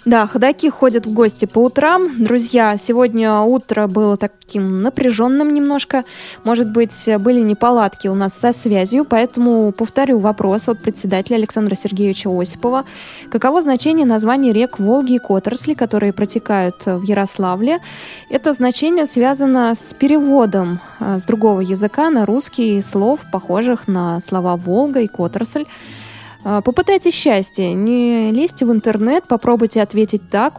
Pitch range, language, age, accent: 200-255 Hz, Russian, 20-39, native